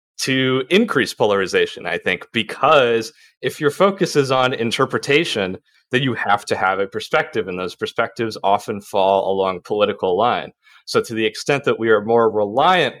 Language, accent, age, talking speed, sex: English, American, 30-49, 165 wpm, male